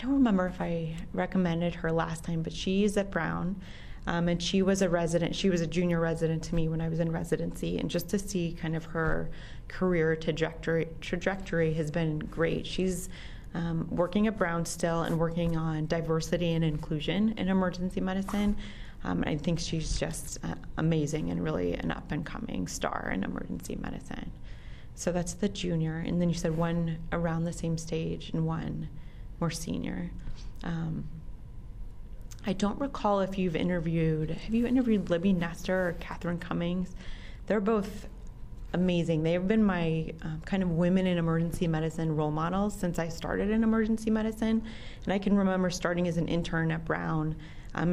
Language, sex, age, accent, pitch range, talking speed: English, female, 30-49, American, 160-185 Hz, 175 wpm